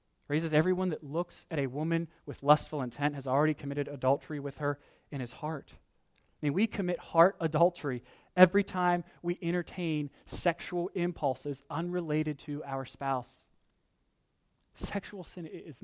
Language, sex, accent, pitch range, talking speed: English, male, American, 135-170 Hz, 145 wpm